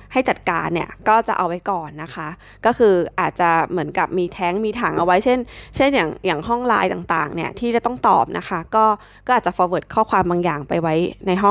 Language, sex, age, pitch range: Thai, female, 20-39, 170-210 Hz